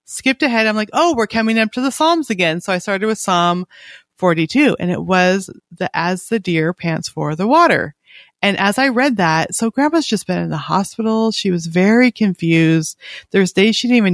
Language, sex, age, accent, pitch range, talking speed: English, female, 30-49, American, 175-225 Hz, 210 wpm